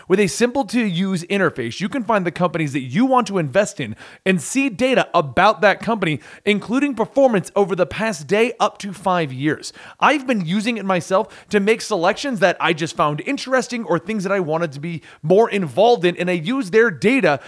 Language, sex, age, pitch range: English, male, 30-49, 170-235 Hz